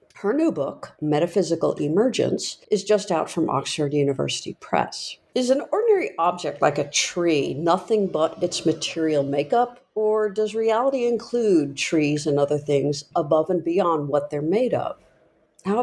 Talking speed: 150 wpm